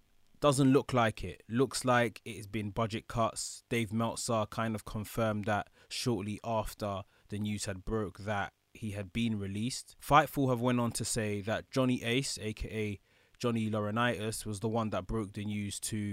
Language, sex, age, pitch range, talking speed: English, male, 20-39, 105-120 Hz, 175 wpm